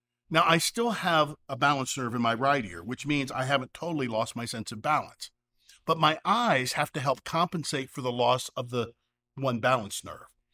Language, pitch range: English, 120-165 Hz